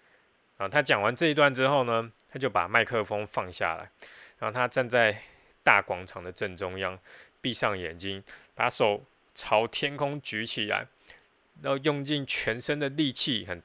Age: 20-39